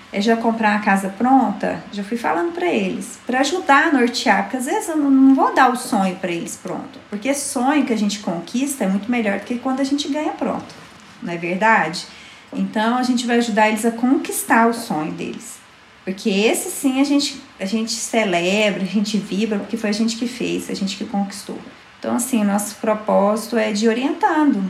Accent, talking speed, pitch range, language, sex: Brazilian, 210 wpm, 200-255 Hz, Portuguese, female